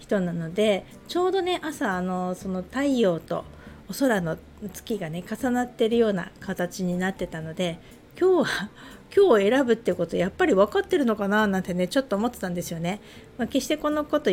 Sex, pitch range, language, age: female, 180-260 Hz, Japanese, 50-69